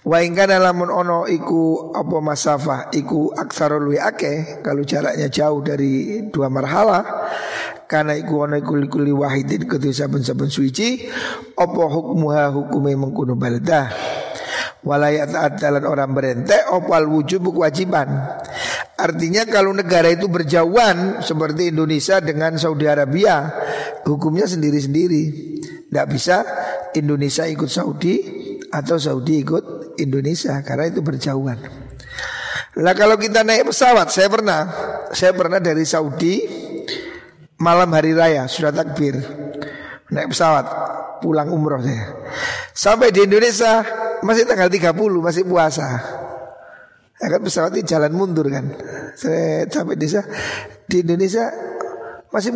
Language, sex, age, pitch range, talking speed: Indonesian, male, 50-69, 145-190 Hz, 120 wpm